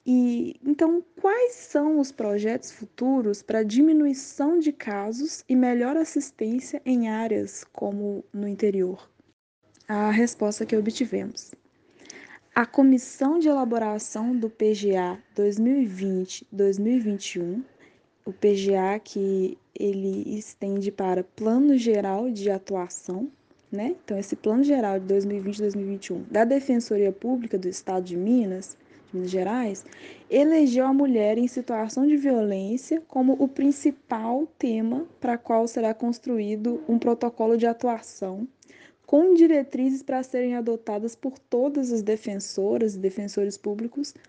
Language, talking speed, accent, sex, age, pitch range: Portuguese, 120 wpm, Brazilian, female, 10-29, 205-265 Hz